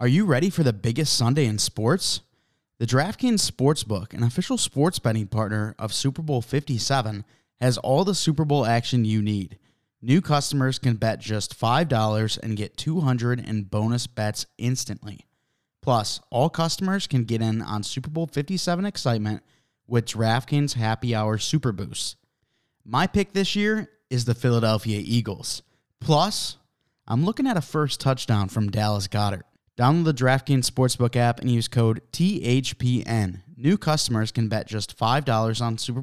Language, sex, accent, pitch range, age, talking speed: English, male, American, 110-145 Hz, 20-39, 155 wpm